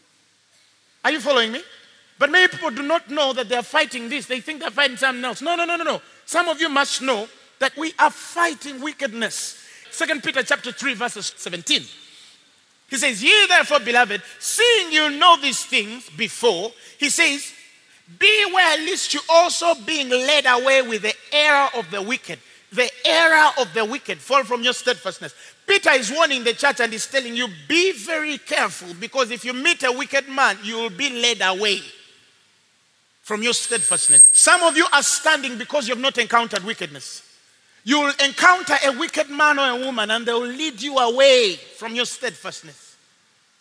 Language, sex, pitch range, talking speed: English, male, 240-315 Hz, 185 wpm